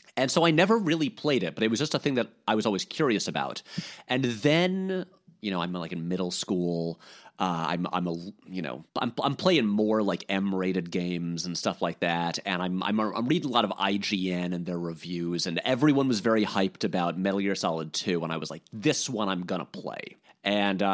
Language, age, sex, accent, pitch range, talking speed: English, 30-49, male, American, 95-135 Hz, 220 wpm